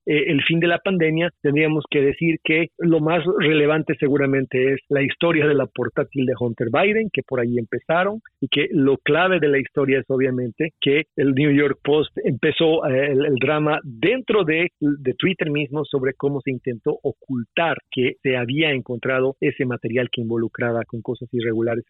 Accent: Mexican